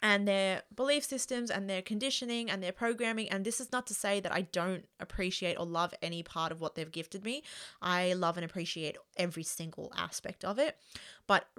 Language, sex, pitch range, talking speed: English, female, 180-210 Hz, 200 wpm